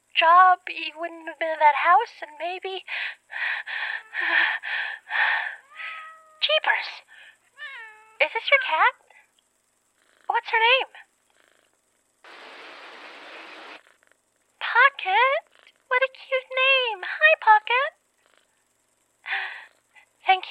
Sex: female